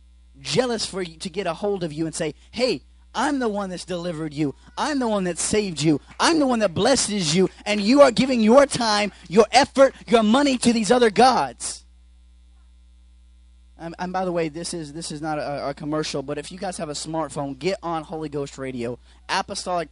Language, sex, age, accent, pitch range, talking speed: English, male, 20-39, American, 165-235 Hz, 210 wpm